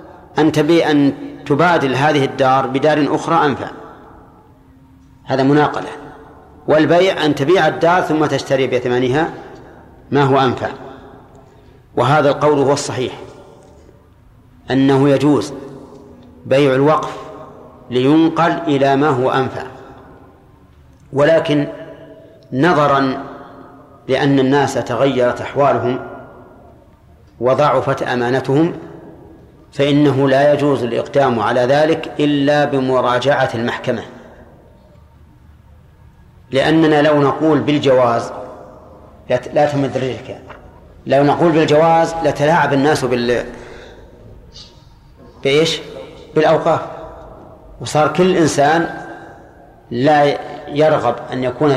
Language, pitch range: Arabic, 130-155 Hz